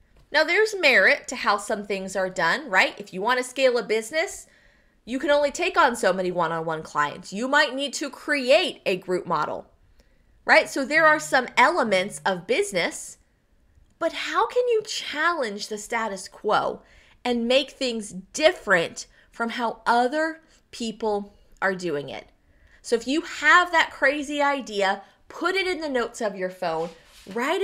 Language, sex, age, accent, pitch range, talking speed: English, female, 20-39, American, 195-295 Hz, 165 wpm